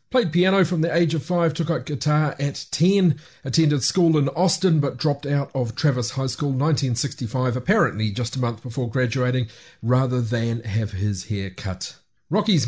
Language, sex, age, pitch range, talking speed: English, male, 40-59, 130-160 Hz, 175 wpm